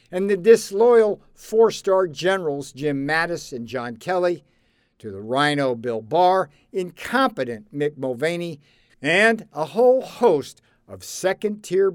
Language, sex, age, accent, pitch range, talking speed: English, male, 60-79, American, 125-185 Hz, 120 wpm